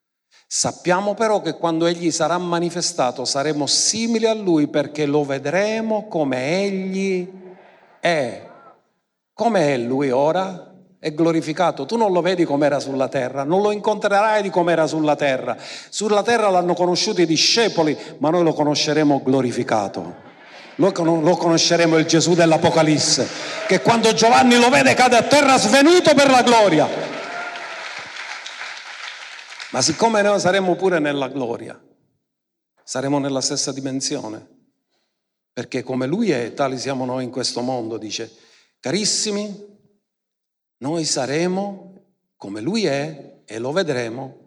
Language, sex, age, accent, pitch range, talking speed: Italian, male, 50-69, native, 145-200 Hz, 130 wpm